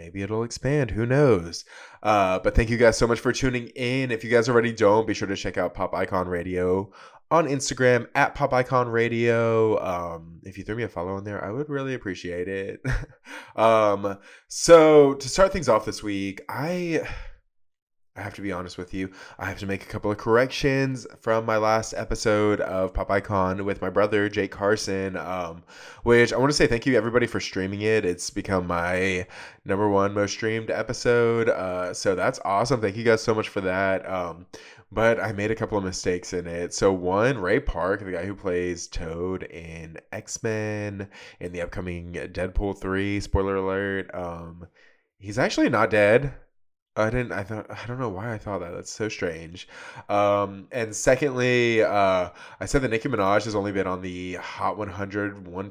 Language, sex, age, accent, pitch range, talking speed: English, male, 20-39, American, 95-115 Hz, 190 wpm